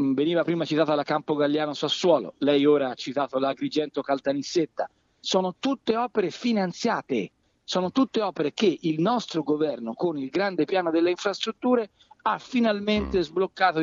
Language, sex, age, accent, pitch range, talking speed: Italian, male, 50-69, native, 145-225 Hz, 145 wpm